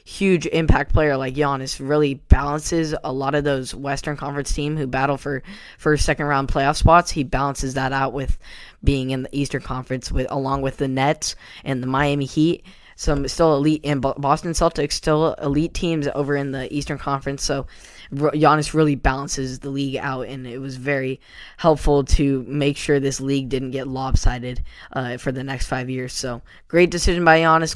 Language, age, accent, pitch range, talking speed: English, 10-29, American, 135-150 Hz, 190 wpm